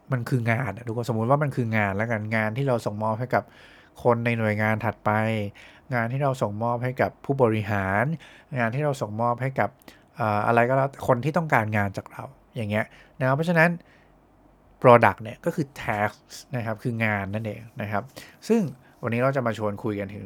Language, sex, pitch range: English, male, 105-135 Hz